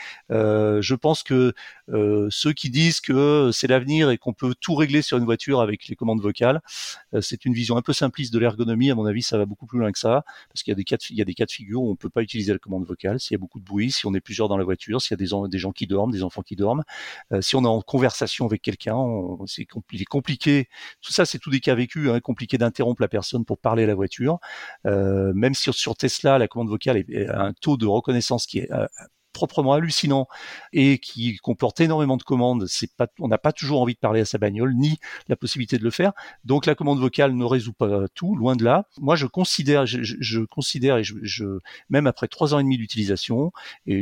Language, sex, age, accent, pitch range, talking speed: French, male, 40-59, French, 105-140 Hz, 270 wpm